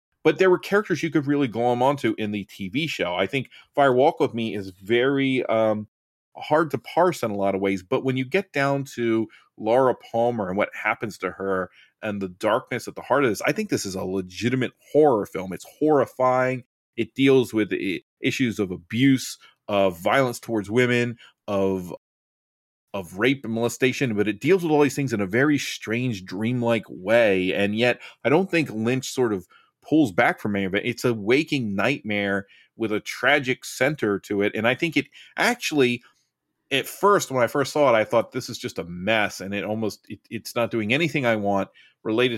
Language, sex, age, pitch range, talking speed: English, male, 30-49, 105-135 Hz, 200 wpm